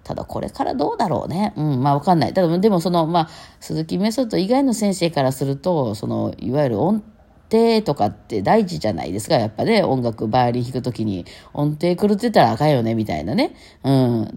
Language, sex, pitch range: Japanese, female, 120-175 Hz